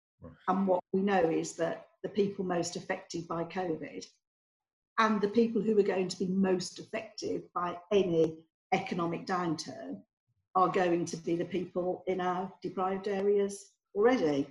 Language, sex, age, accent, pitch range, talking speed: English, female, 50-69, British, 165-210 Hz, 155 wpm